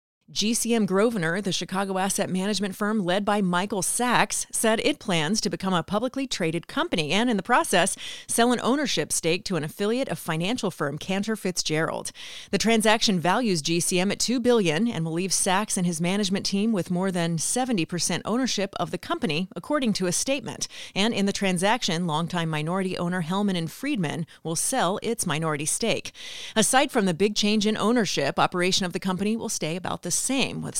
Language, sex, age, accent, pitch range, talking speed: English, female, 30-49, American, 170-220 Hz, 185 wpm